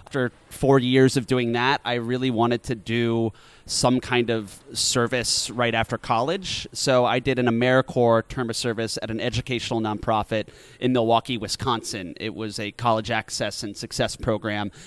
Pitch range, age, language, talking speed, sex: 110-130 Hz, 30-49, English, 165 wpm, male